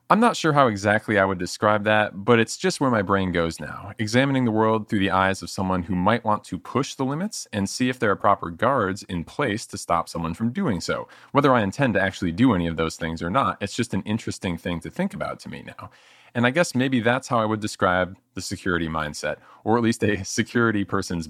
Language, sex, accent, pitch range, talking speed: English, male, American, 90-120 Hz, 250 wpm